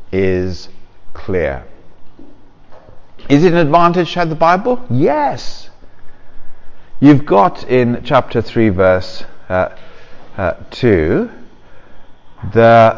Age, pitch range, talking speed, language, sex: 50-69, 90-115 Hz, 95 wpm, English, male